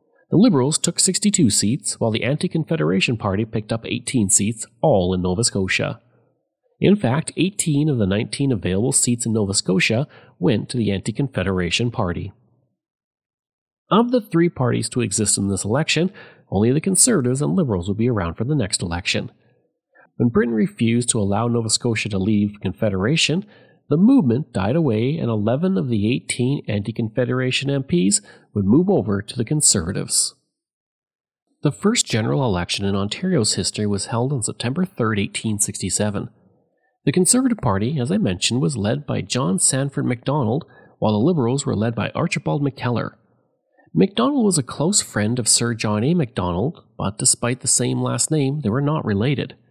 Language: English